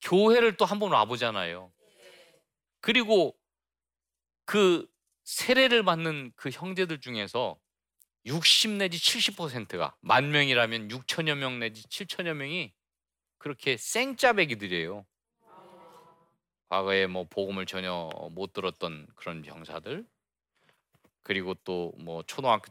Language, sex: Korean, male